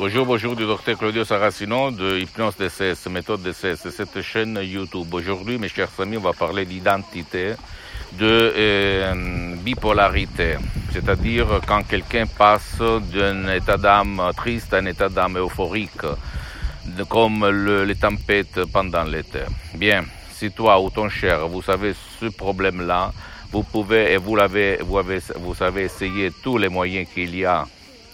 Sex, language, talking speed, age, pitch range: male, Italian, 155 wpm, 60-79, 90-105 Hz